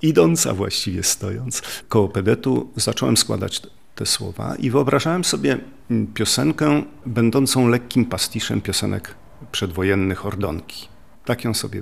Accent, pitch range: native, 95-115 Hz